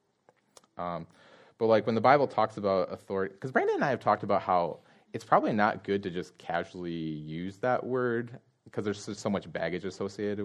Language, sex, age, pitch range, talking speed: English, male, 30-49, 80-105 Hz, 195 wpm